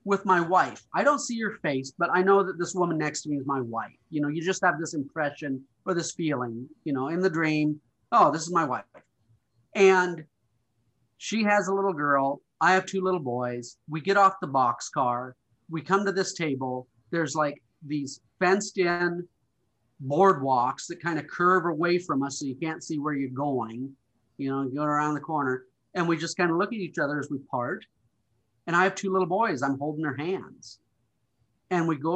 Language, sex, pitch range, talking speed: English, male, 125-175 Hz, 210 wpm